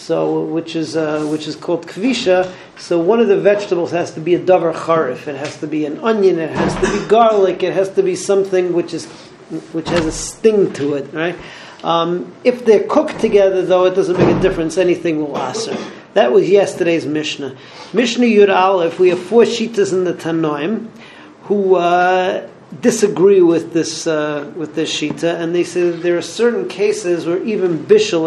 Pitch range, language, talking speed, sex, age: 160-195 Hz, English, 195 wpm, male, 40-59